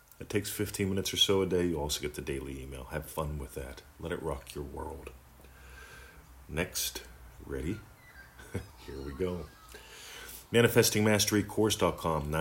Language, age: English, 40-59